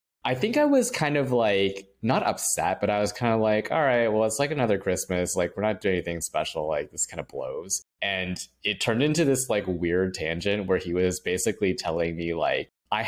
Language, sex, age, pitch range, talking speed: English, male, 20-39, 90-125 Hz, 225 wpm